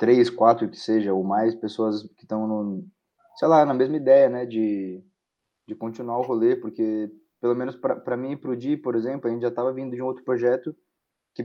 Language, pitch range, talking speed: Portuguese, 110-130 Hz, 220 wpm